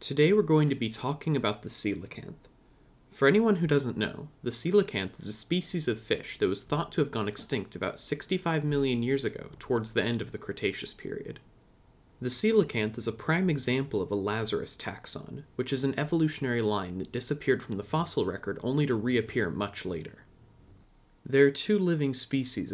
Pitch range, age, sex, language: 105-145 Hz, 30-49, male, English